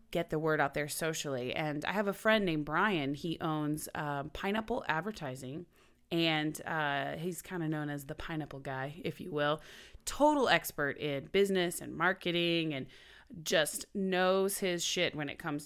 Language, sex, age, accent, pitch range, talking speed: English, female, 30-49, American, 155-195 Hz, 175 wpm